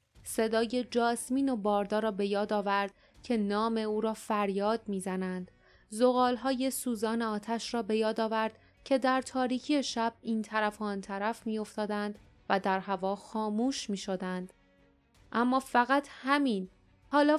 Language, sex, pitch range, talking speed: Persian, female, 195-230 Hz, 135 wpm